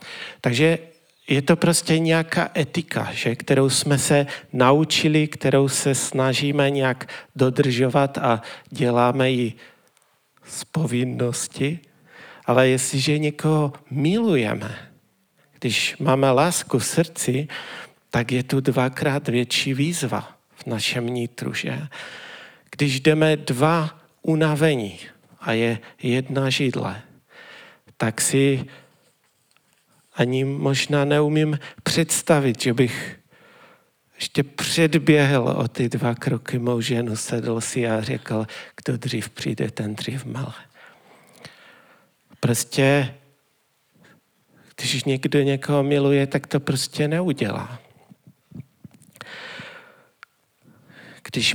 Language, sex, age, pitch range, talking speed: Czech, male, 40-59, 125-155 Hz, 100 wpm